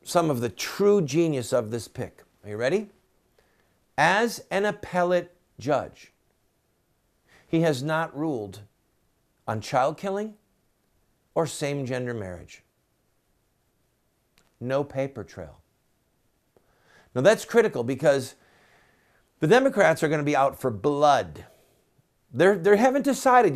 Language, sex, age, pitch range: English, male, 50-69, 125-170 Hz